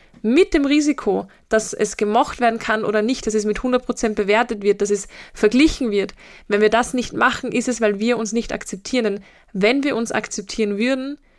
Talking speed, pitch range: 200 wpm, 210-240 Hz